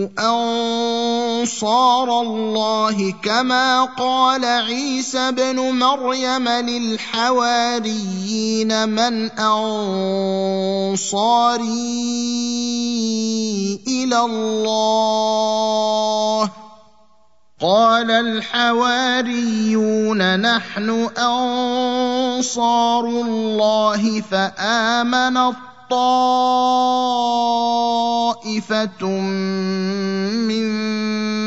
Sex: male